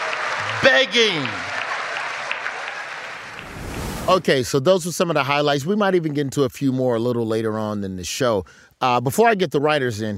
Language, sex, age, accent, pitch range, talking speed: English, male, 30-49, American, 120-185 Hz, 185 wpm